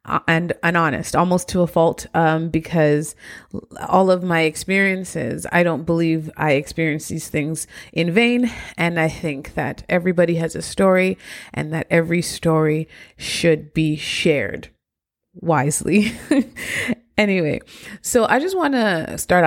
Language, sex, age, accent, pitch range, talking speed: English, female, 30-49, American, 160-220 Hz, 140 wpm